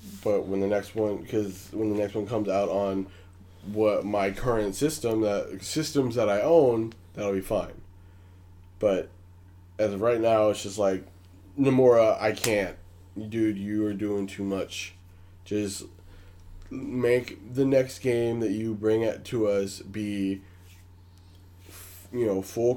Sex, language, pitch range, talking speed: male, English, 90-110 Hz, 150 wpm